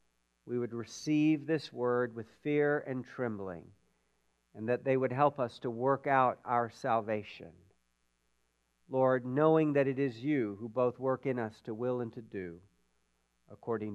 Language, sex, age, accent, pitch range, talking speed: English, male, 50-69, American, 120-170 Hz, 160 wpm